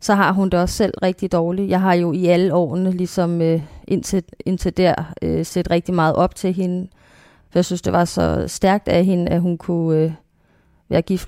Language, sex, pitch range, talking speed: Danish, female, 160-180 Hz, 200 wpm